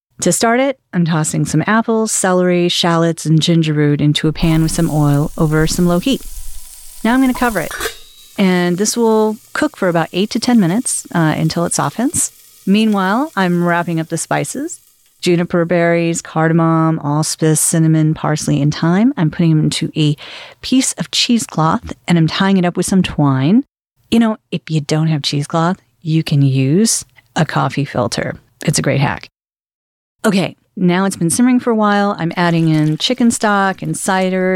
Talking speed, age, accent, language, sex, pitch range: 180 wpm, 40-59, American, English, female, 155-205 Hz